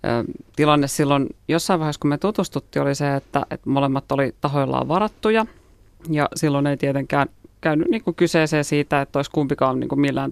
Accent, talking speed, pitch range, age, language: native, 165 wpm, 135-150 Hz, 30-49, Finnish